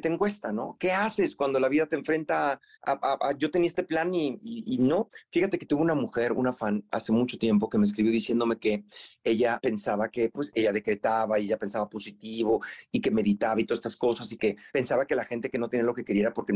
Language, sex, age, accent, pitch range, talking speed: Spanish, male, 40-59, Mexican, 120-165 Hz, 245 wpm